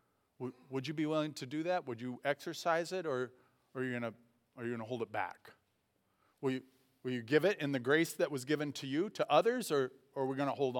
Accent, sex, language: American, male, English